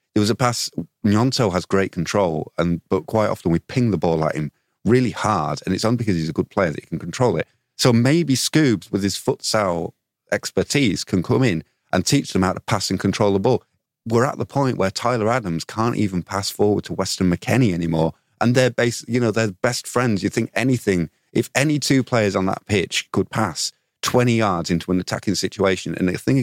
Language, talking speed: English, 220 wpm